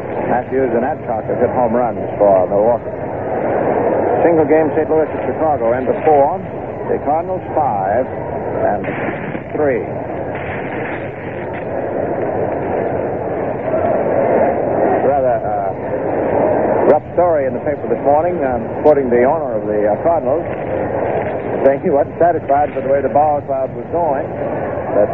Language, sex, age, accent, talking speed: English, male, 60-79, American, 125 wpm